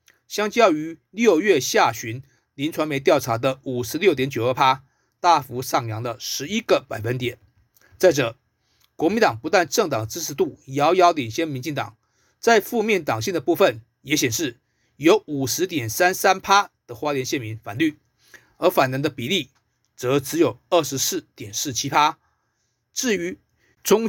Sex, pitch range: male, 120-175 Hz